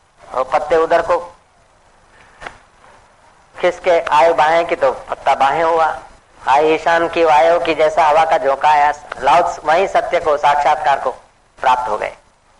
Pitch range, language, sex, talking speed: 145-175 Hz, Hindi, female, 140 wpm